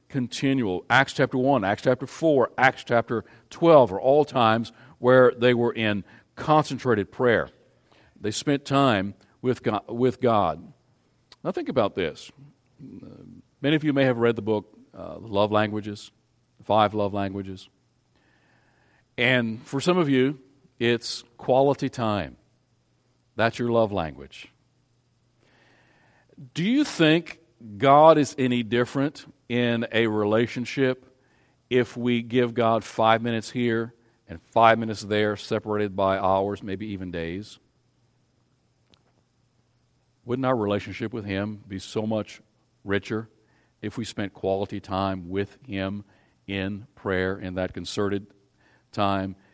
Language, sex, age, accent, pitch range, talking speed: English, male, 50-69, American, 100-130 Hz, 125 wpm